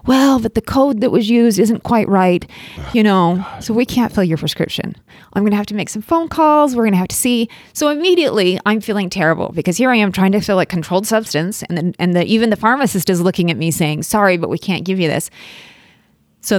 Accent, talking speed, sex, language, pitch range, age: American, 245 wpm, female, English, 165-220 Hz, 30-49